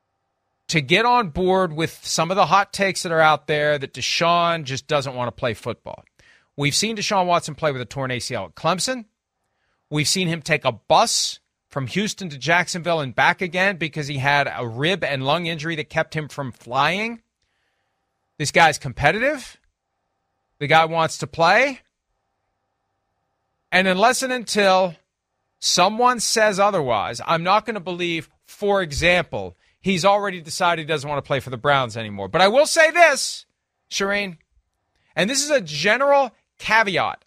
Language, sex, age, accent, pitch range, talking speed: English, male, 40-59, American, 140-200 Hz, 170 wpm